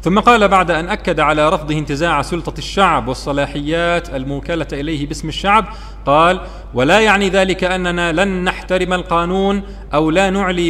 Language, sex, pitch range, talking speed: Arabic, male, 145-195 Hz, 145 wpm